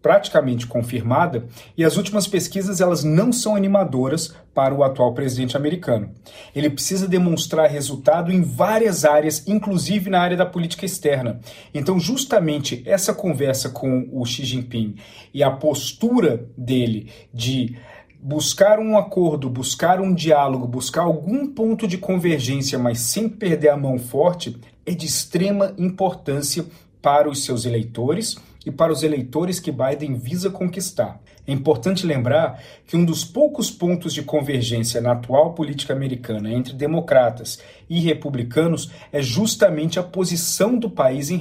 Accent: Brazilian